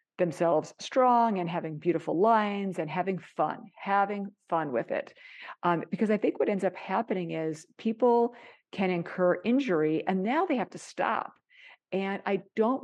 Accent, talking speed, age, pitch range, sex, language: American, 165 wpm, 50-69, 165-200 Hz, female, English